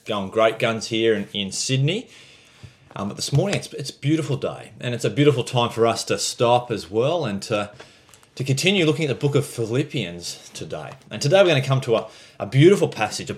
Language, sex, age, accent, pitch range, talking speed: English, male, 30-49, Australian, 105-140 Hz, 225 wpm